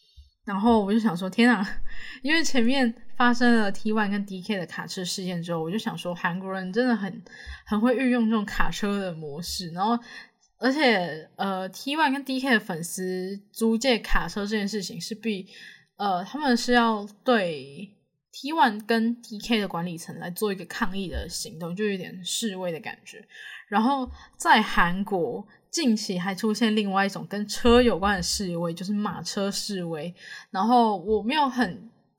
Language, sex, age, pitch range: Chinese, female, 10-29, 180-235 Hz